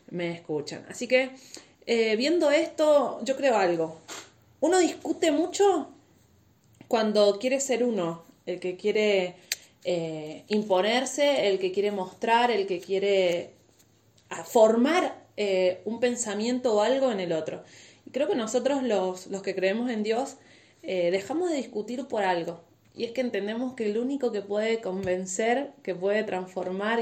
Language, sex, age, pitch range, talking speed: Spanish, female, 20-39, 185-255 Hz, 150 wpm